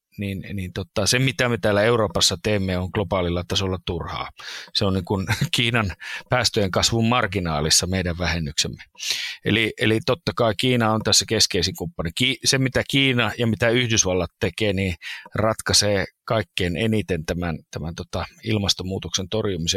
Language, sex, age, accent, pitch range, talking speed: Finnish, male, 30-49, native, 95-120 Hz, 130 wpm